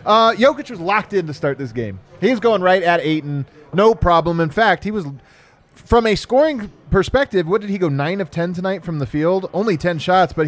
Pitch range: 155-210 Hz